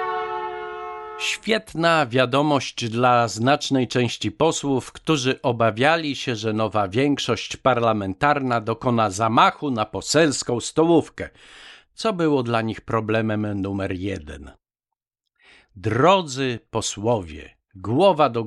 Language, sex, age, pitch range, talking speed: Polish, male, 50-69, 105-145 Hz, 95 wpm